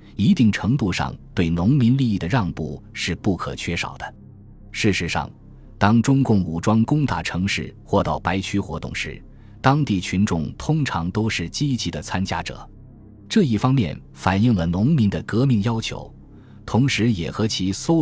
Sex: male